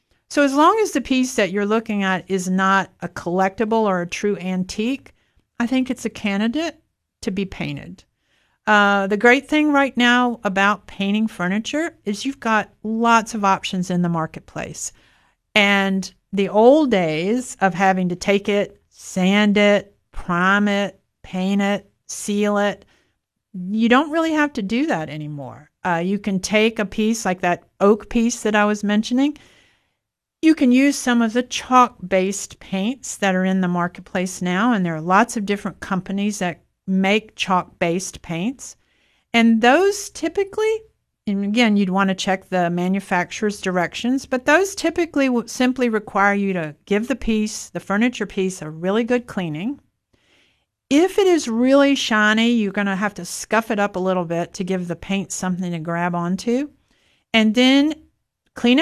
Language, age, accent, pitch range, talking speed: English, 50-69, American, 190-245 Hz, 170 wpm